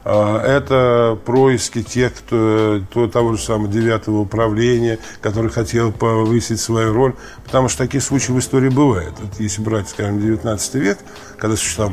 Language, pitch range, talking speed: Russian, 110-130 Hz, 150 wpm